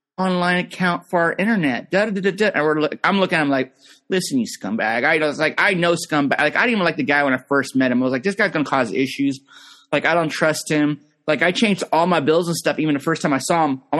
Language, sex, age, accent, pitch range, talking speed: English, male, 30-49, American, 140-180 Hz, 290 wpm